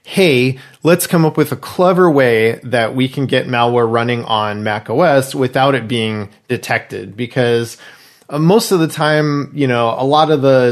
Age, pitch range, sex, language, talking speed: 30-49, 115-155 Hz, male, English, 180 wpm